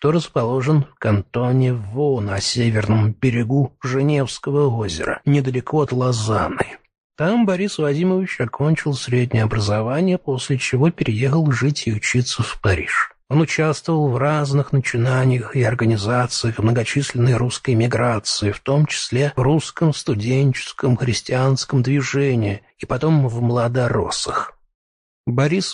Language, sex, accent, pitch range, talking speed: Russian, male, native, 120-155 Hz, 115 wpm